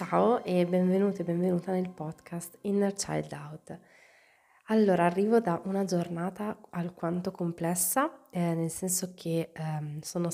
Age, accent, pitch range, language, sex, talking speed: 20-39, native, 160-180 Hz, Italian, female, 135 wpm